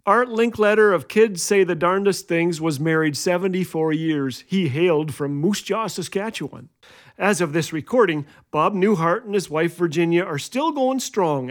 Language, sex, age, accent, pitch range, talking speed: English, male, 40-59, American, 150-200 Hz, 165 wpm